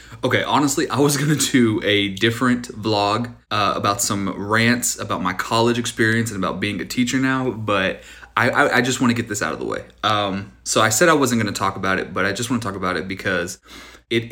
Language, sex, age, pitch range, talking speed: English, male, 30-49, 105-130 Hz, 245 wpm